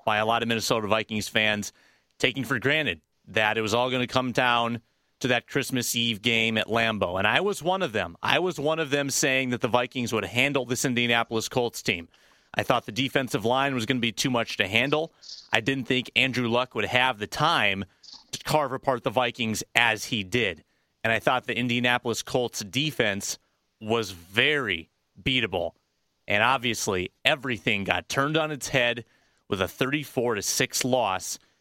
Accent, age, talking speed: American, 30-49, 190 wpm